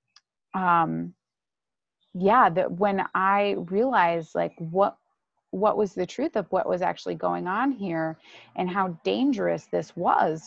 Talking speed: 140 wpm